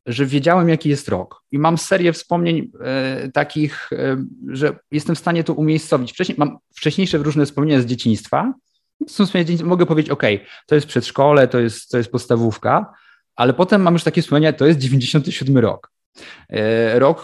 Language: Polish